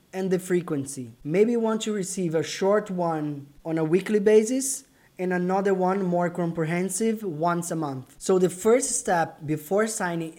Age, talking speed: 20-39, 170 wpm